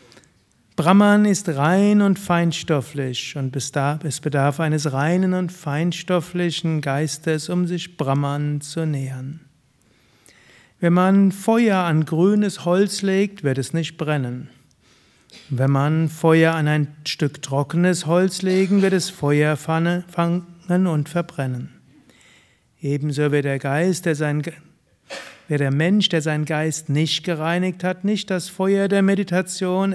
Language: German